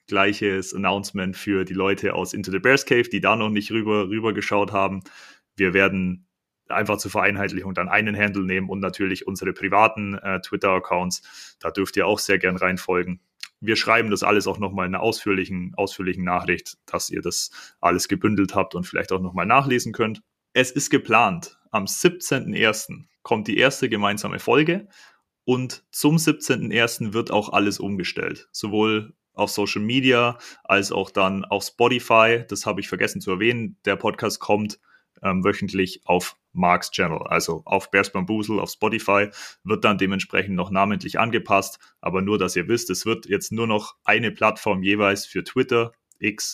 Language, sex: German, male